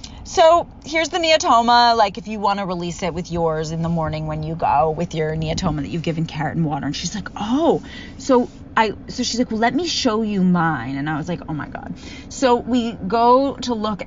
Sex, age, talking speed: female, 30-49, 235 wpm